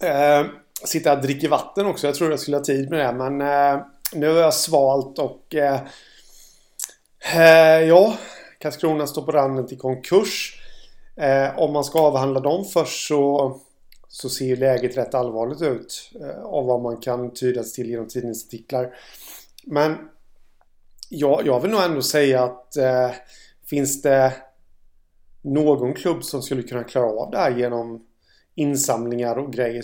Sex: male